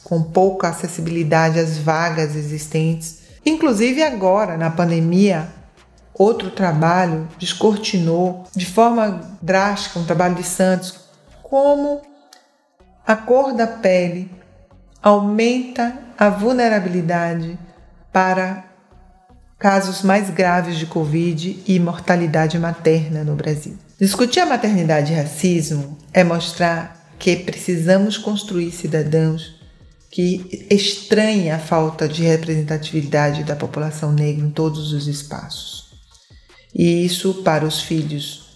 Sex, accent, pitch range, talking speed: female, Brazilian, 165-205 Hz, 105 wpm